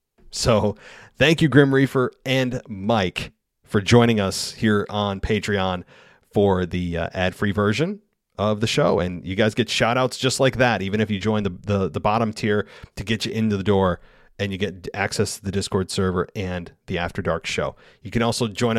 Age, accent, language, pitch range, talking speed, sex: 30-49, American, English, 95-120 Hz, 200 wpm, male